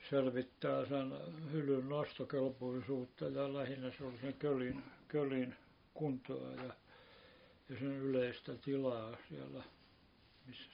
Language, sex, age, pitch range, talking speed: Finnish, male, 60-79, 125-145 Hz, 105 wpm